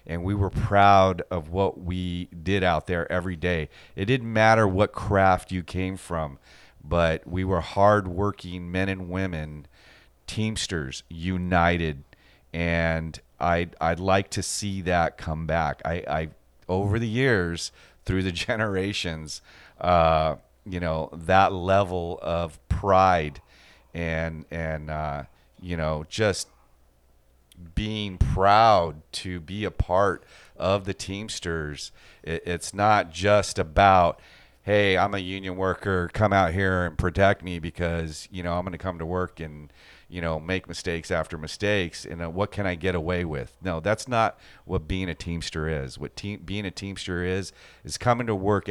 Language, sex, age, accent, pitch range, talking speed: English, male, 40-59, American, 80-95 Hz, 150 wpm